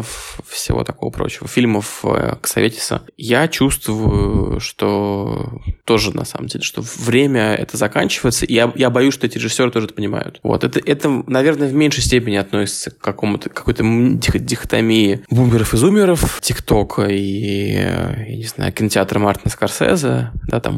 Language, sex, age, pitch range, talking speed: Russian, male, 20-39, 110-135 Hz, 155 wpm